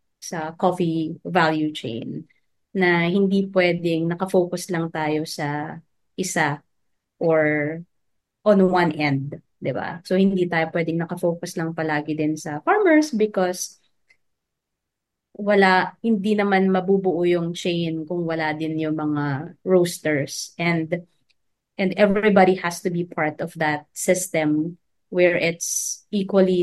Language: Filipino